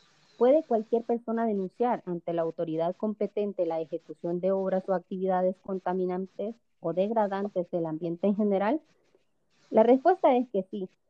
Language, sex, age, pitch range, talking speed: Spanish, female, 30-49, 175-225 Hz, 140 wpm